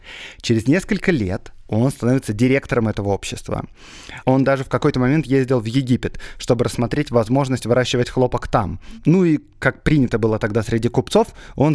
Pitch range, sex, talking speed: 110-140 Hz, male, 160 wpm